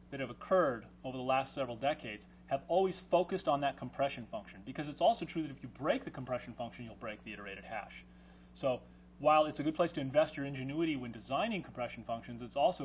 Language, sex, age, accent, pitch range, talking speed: English, male, 30-49, American, 95-150 Hz, 220 wpm